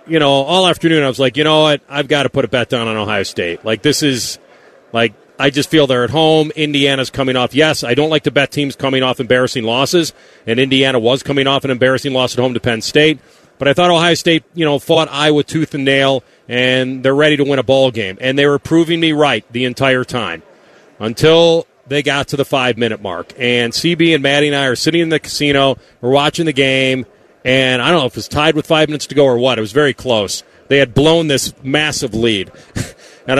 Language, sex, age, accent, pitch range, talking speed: English, male, 40-59, American, 130-160 Hz, 240 wpm